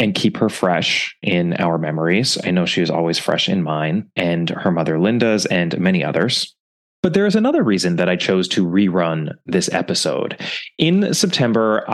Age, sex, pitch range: 20-39, male, 95-155 Hz